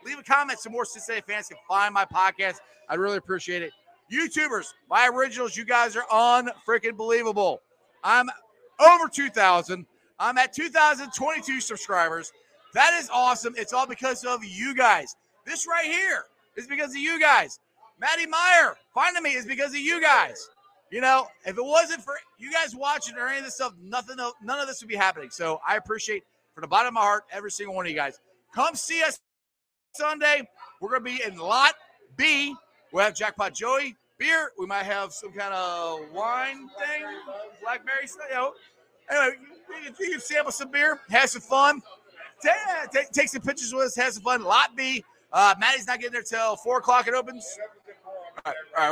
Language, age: English, 30-49